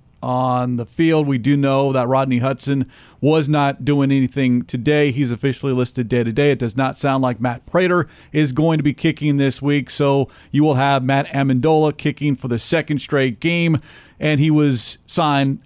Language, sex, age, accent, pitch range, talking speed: English, male, 40-59, American, 125-150 Hz, 185 wpm